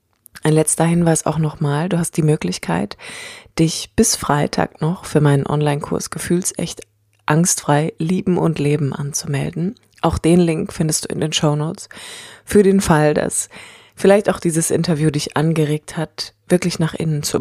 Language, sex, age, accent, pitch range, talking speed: German, female, 20-39, German, 140-170 Hz, 160 wpm